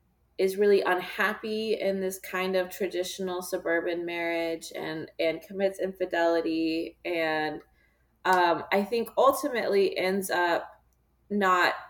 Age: 20-39